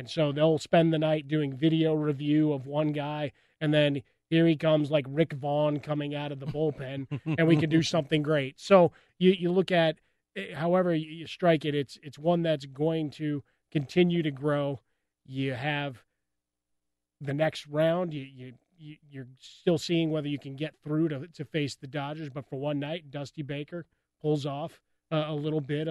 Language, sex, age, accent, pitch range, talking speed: English, male, 30-49, American, 145-185 Hz, 190 wpm